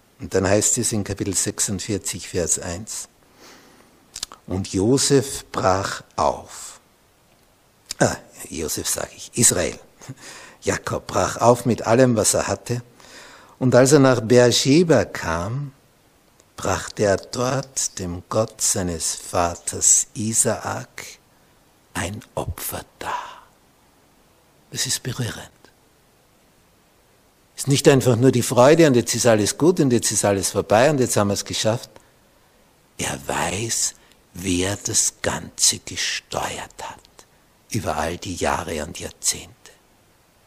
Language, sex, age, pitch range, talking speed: German, male, 60-79, 100-135 Hz, 120 wpm